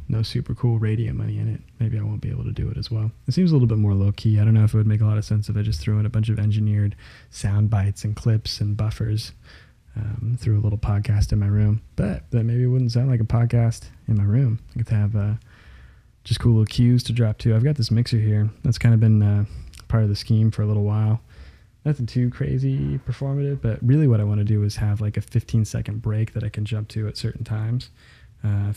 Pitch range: 105-120 Hz